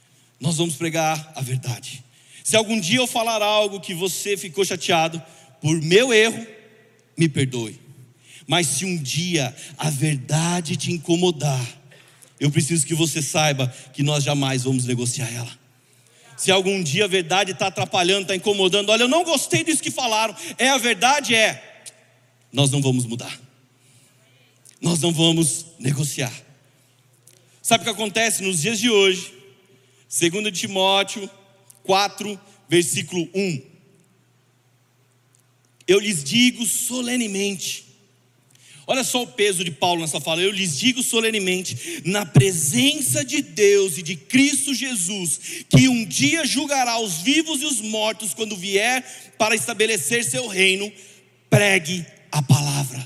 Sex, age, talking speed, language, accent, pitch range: male, 40-59, 140 wpm, Portuguese, Brazilian, 135-210 Hz